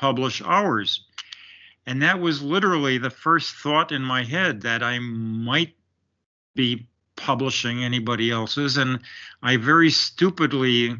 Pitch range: 120-145 Hz